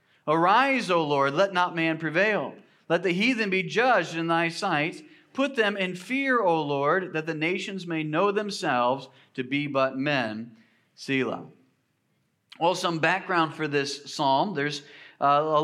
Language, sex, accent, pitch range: English, male, American, 145-180 Hz